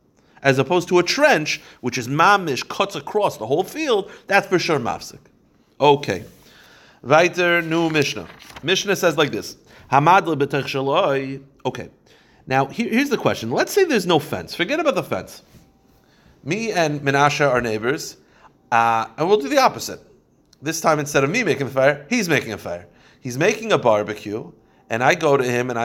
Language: English